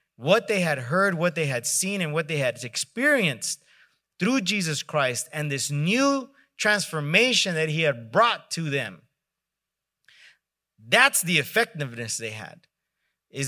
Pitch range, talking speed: 145-200 Hz, 140 wpm